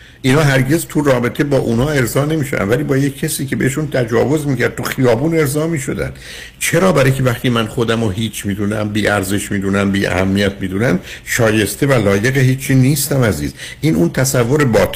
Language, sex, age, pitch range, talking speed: Persian, male, 60-79, 110-145 Hz, 175 wpm